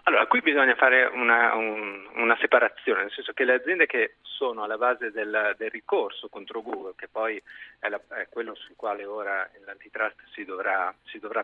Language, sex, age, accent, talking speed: Italian, male, 40-59, native, 190 wpm